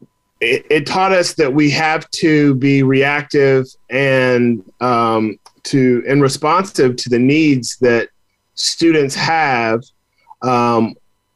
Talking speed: 110 wpm